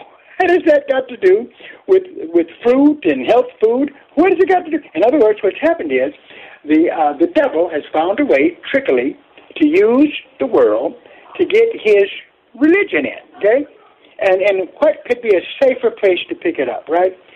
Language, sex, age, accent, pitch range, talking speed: English, male, 60-79, American, 240-370 Hz, 195 wpm